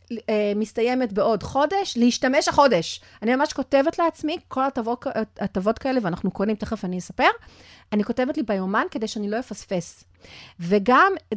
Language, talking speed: Hebrew, 145 wpm